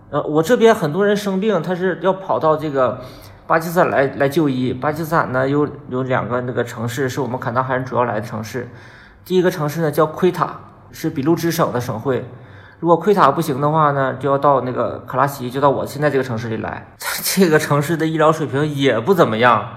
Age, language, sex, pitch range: 20-39, Chinese, male, 125-180 Hz